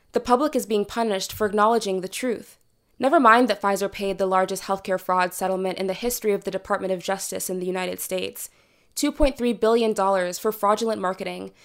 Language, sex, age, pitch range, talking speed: English, female, 20-39, 190-225 Hz, 180 wpm